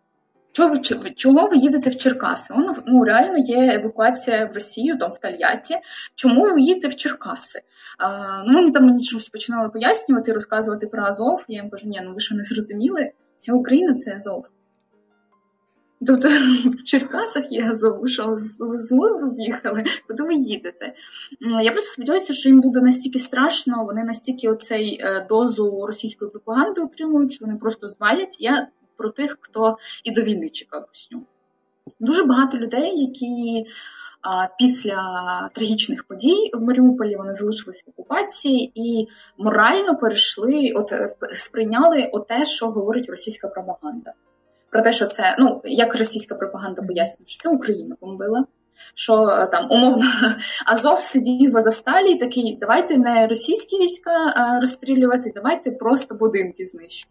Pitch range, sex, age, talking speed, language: 215-270 Hz, female, 20-39, 145 wpm, Ukrainian